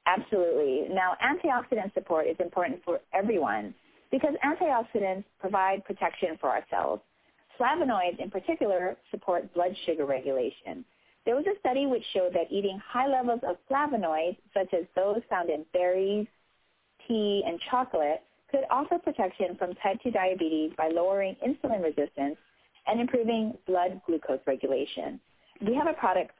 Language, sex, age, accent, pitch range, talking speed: English, female, 30-49, American, 165-245 Hz, 145 wpm